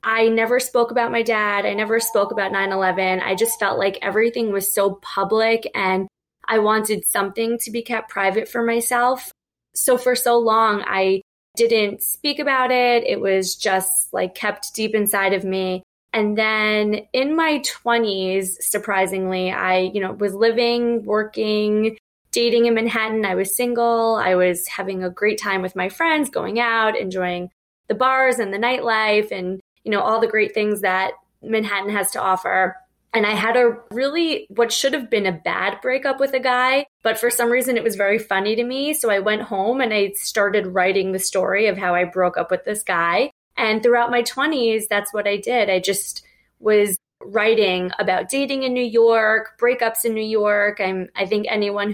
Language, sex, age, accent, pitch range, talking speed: English, female, 20-39, American, 195-235 Hz, 185 wpm